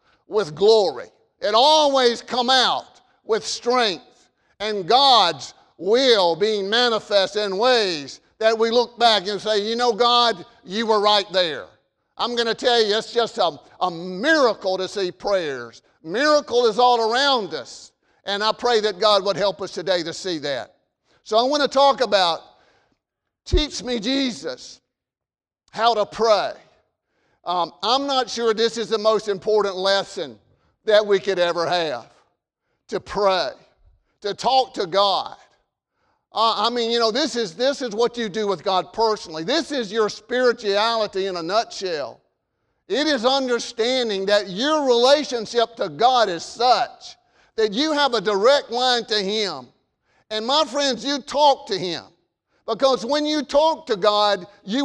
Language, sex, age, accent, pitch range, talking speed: English, male, 50-69, American, 205-255 Hz, 160 wpm